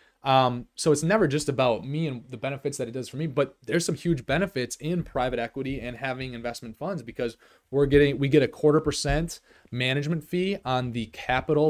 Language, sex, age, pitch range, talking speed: English, male, 20-39, 120-155 Hz, 205 wpm